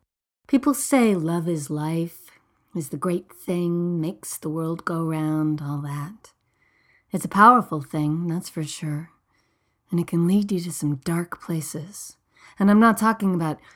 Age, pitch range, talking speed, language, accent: 40-59, 150-180 Hz, 160 wpm, English, American